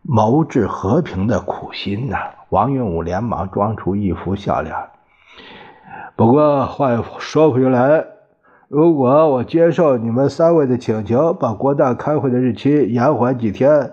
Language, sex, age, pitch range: Chinese, male, 60-79, 100-140 Hz